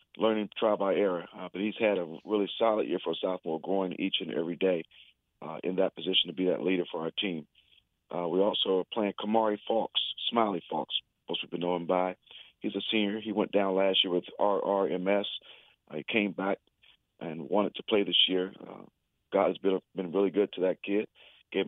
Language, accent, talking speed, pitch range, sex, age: English, American, 210 wpm, 90-105 Hz, male, 40-59